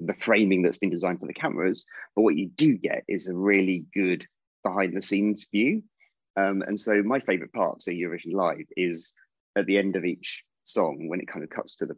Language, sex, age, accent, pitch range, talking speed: English, male, 30-49, British, 90-100 Hz, 220 wpm